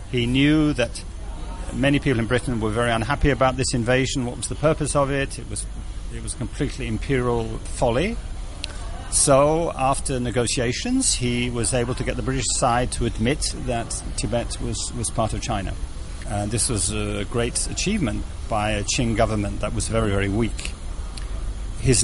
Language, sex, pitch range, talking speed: English, male, 100-130 Hz, 170 wpm